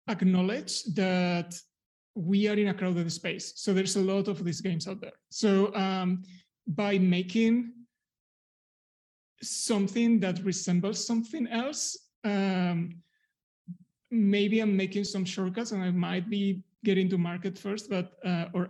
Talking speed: 140 wpm